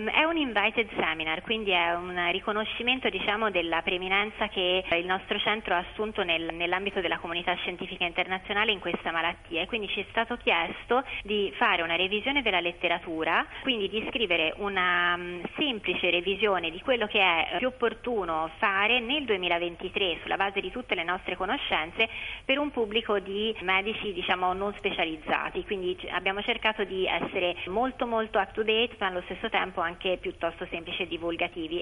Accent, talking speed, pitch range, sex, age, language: native, 170 wpm, 175-220 Hz, female, 30-49, Italian